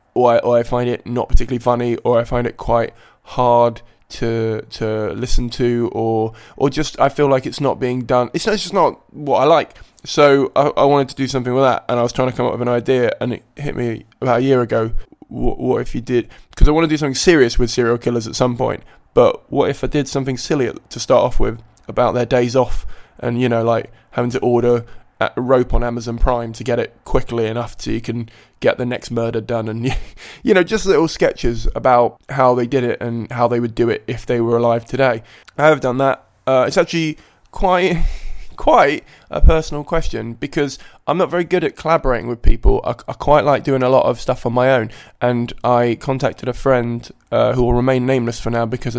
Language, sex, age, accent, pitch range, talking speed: English, male, 20-39, British, 115-135 Hz, 235 wpm